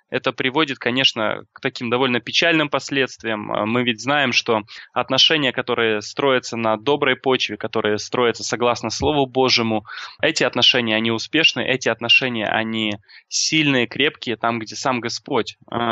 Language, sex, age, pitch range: Russian, male, 20-39, 115-135 Hz